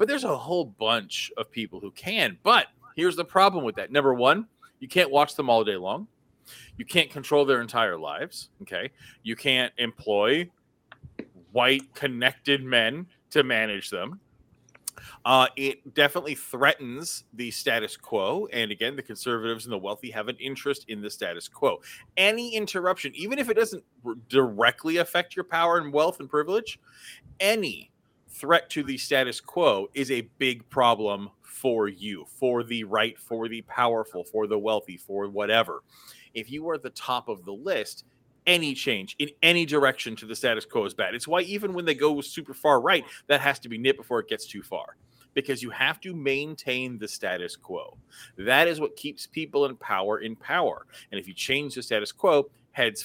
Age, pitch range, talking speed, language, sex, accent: 30-49, 115-155 Hz, 185 wpm, English, male, American